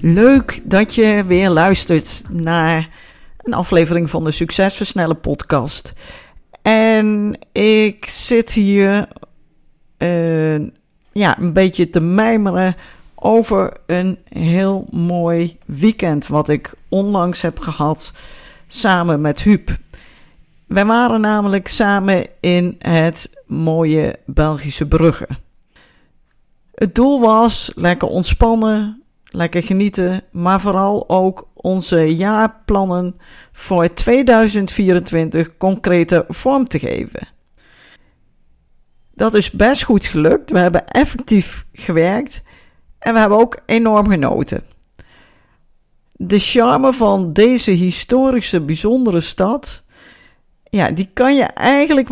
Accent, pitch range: Dutch, 170-220 Hz